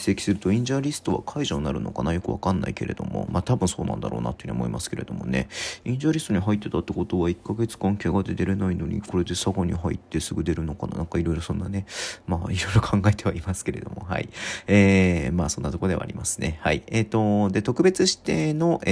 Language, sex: Japanese, male